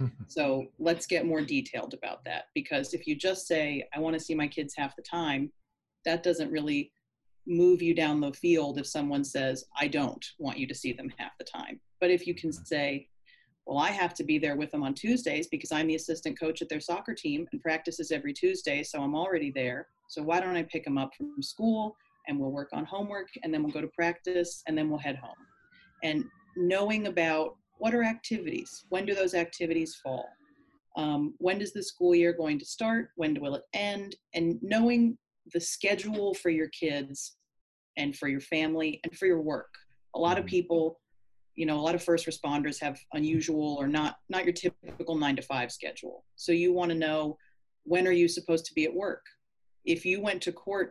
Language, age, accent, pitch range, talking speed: English, 30-49, American, 150-190 Hz, 210 wpm